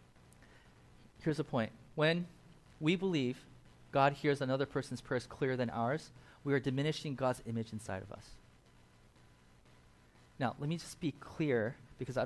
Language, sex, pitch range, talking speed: English, male, 130-170 Hz, 145 wpm